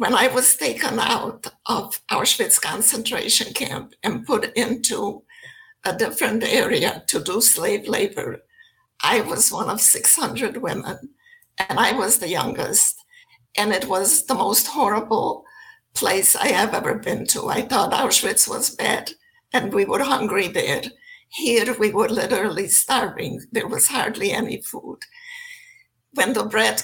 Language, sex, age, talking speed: English, female, 60-79, 145 wpm